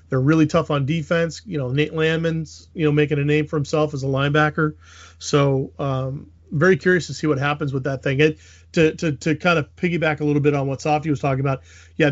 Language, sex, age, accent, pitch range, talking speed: English, male, 30-49, American, 130-155 Hz, 235 wpm